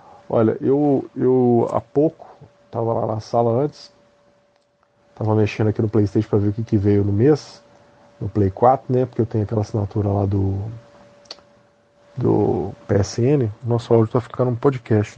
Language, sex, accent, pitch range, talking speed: English, male, Brazilian, 115-155 Hz, 165 wpm